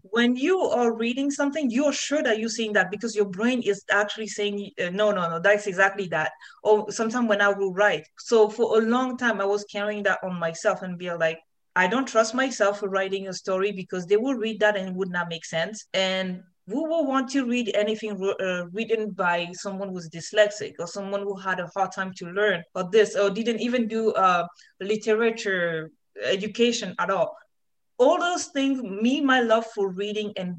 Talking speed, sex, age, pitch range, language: 205 wpm, female, 20-39, 190-230 Hz, English